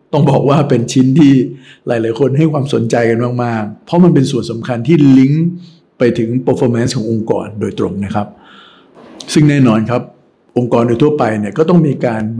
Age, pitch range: 60-79, 115-135 Hz